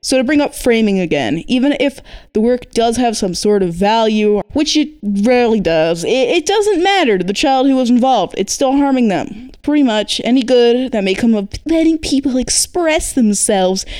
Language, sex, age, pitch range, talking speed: English, female, 20-39, 185-235 Hz, 195 wpm